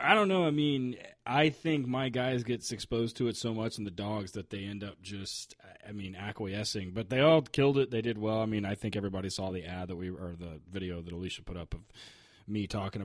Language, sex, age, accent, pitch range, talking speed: English, male, 30-49, American, 95-120 Hz, 250 wpm